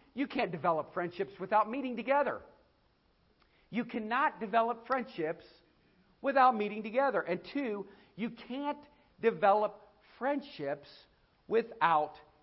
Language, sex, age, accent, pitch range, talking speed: English, male, 50-69, American, 155-225 Hz, 100 wpm